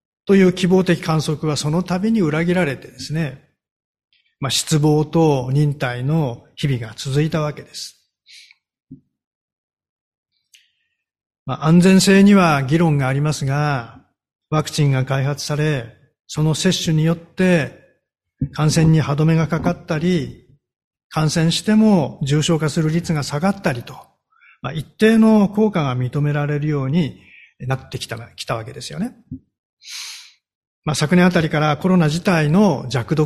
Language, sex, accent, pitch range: Japanese, male, native, 135-170 Hz